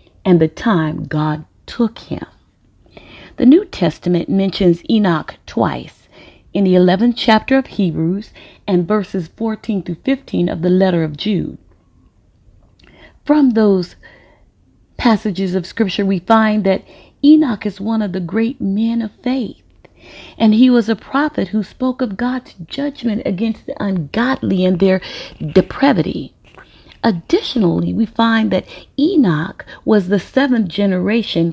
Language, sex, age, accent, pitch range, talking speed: English, female, 40-59, American, 175-235 Hz, 130 wpm